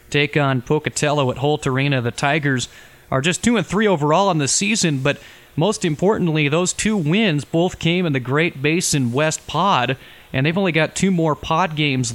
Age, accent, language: 30-49, American, English